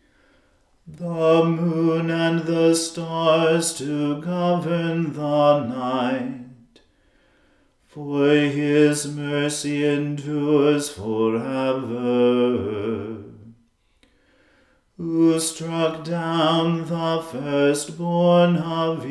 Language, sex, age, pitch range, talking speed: English, male, 40-59, 125-165 Hz, 65 wpm